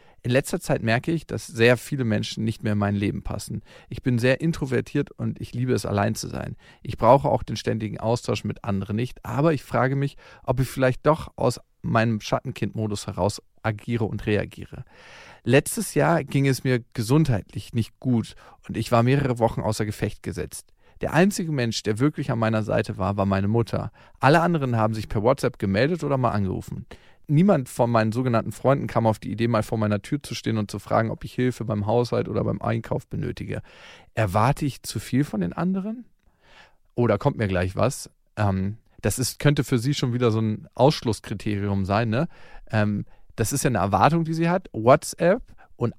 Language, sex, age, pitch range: German, male, 40-59, 110-140 Hz